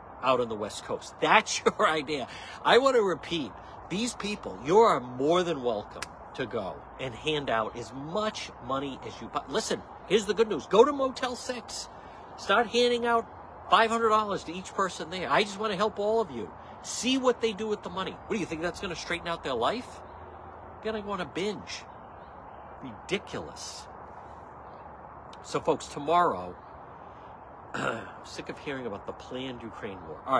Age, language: 60-79, English